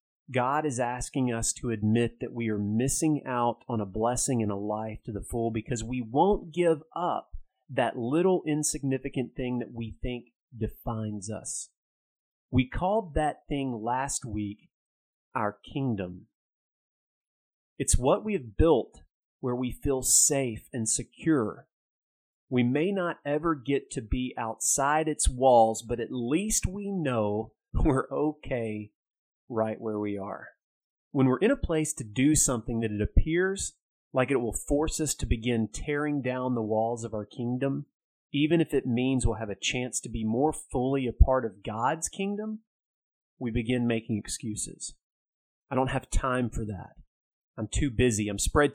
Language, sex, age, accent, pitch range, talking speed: English, male, 30-49, American, 115-150 Hz, 160 wpm